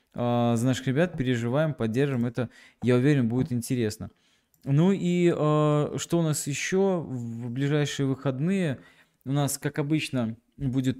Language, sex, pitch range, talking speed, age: Russian, male, 115-145 Hz, 130 wpm, 20-39